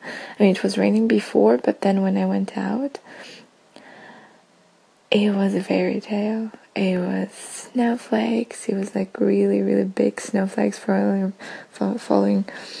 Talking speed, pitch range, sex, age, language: 135 wpm, 180-220 Hz, female, 20-39, English